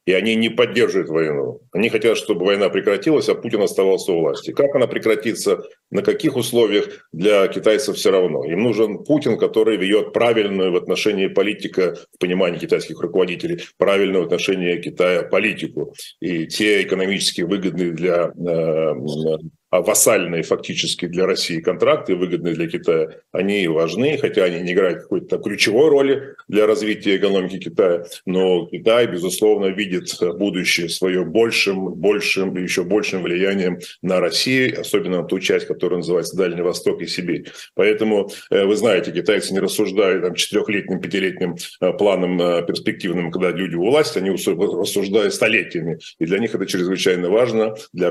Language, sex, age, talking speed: Russian, male, 40-59, 145 wpm